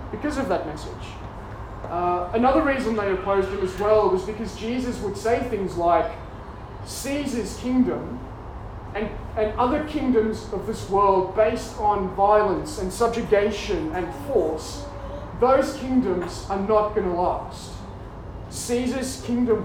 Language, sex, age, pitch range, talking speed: English, male, 20-39, 155-225 Hz, 135 wpm